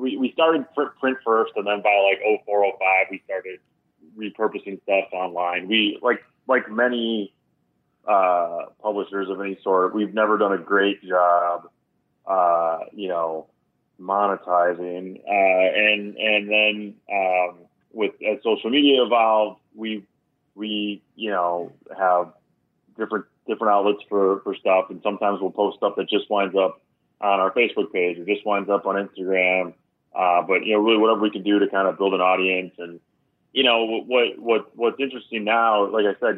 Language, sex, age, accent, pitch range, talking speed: English, male, 30-49, American, 95-110 Hz, 165 wpm